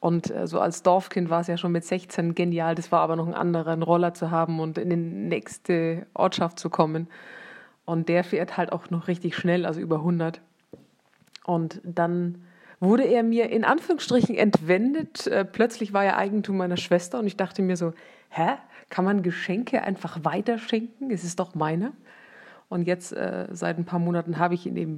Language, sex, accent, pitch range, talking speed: German, female, German, 170-210 Hz, 195 wpm